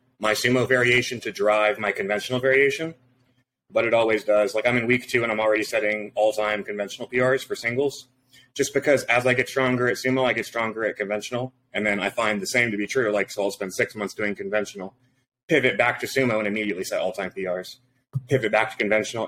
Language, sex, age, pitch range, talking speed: English, male, 30-49, 110-130 Hz, 220 wpm